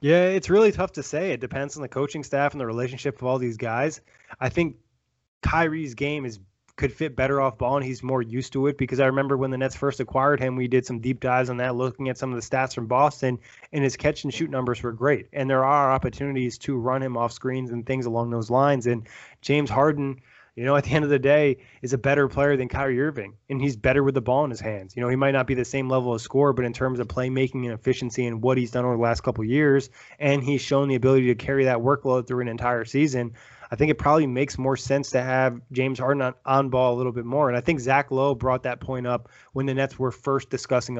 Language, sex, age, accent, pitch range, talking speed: English, male, 20-39, American, 125-140 Hz, 265 wpm